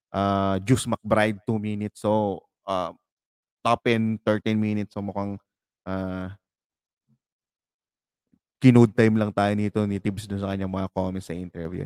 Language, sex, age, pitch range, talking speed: English, male, 20-39, 100-120 Hz, 130 wpm